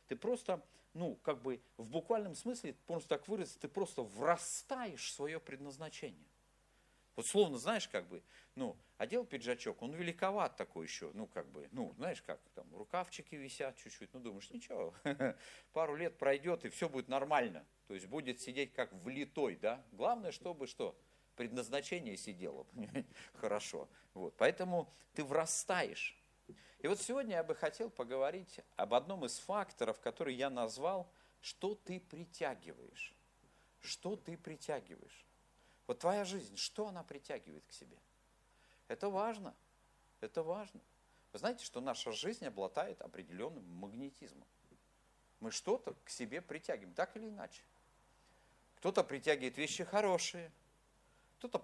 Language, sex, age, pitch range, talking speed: Russian, male, 50-69, 135-200 Hz, 135 wpm